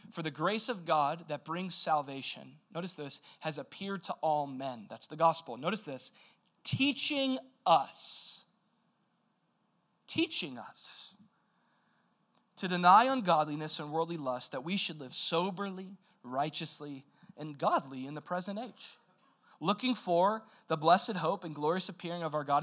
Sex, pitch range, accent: male, 155-225 Hz, American